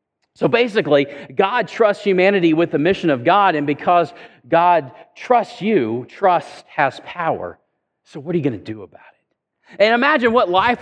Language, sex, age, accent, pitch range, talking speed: English, male, 40-59, American, 145-210 Hz, 170 wpm